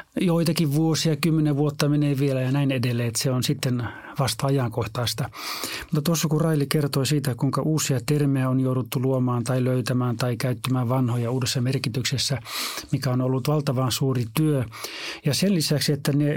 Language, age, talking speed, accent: Finnish, 30-49, 165 wpm, native